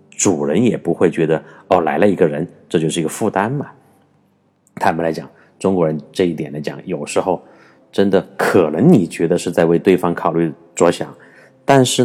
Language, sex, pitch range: Chinese, male, 85-100 Hz